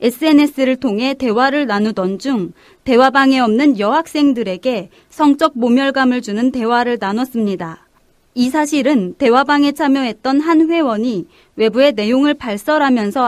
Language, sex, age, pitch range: Korean, female, 30-49, 230-295 Hz